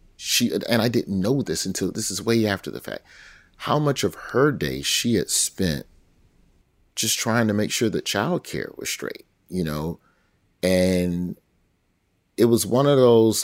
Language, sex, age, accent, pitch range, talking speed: English, male, 30-49, American, 80-105 Hz, 170 wpm